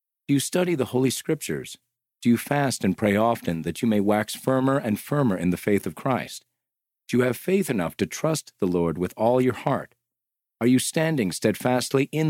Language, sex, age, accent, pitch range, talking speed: English, male, 40-59, American, 95-130 Hz, 205 wpm